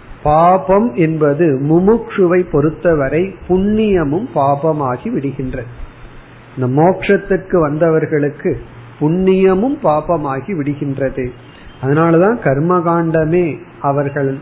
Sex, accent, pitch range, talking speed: male, native, 135-180 Hz, 60 wpm